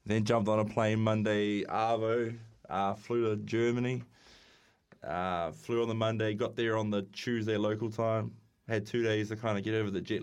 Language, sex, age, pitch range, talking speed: English, male, 20-39, 100-115 Hz, 195 wpm